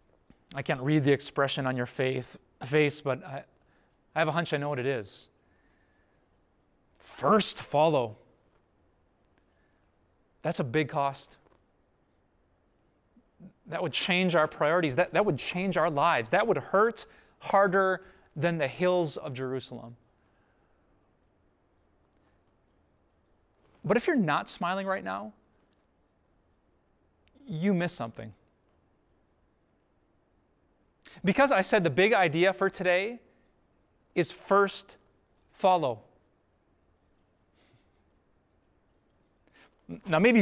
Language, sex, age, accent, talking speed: English, male, 30-49, American, 100 wpm